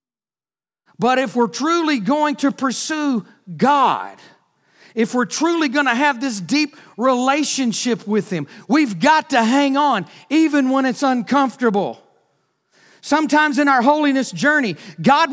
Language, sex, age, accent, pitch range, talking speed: English, male, 40-59, American, 200-280 Hz, 135 wpm